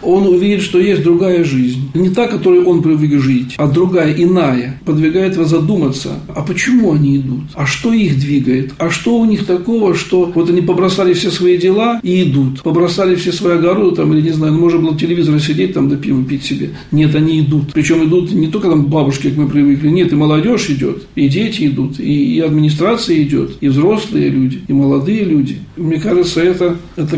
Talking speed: 200 wpm